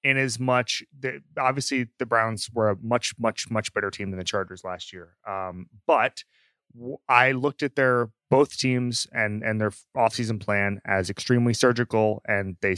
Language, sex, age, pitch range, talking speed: English, male, 30-49, 105-130 Hz, 175 wpm